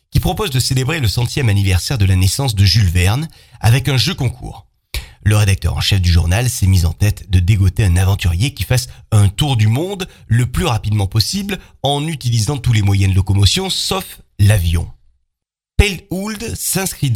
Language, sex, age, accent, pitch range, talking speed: French, male, 30-49, French, 100-140 Hz, 180 wpm